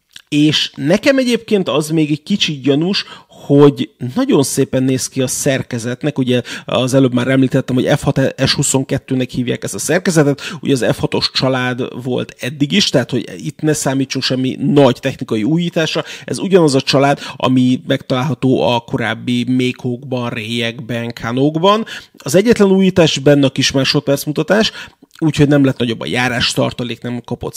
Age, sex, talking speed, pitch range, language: 30-49, male, 150 wpm, 125-155 Hz, Hungarian